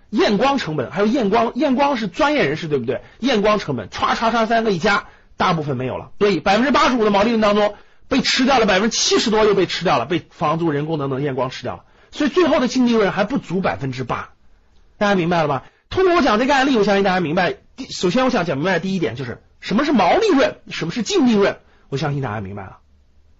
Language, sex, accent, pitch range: Chinese, male, native, 150-245 Hz